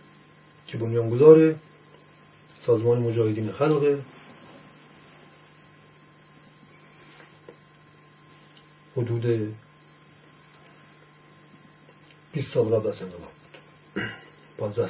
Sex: male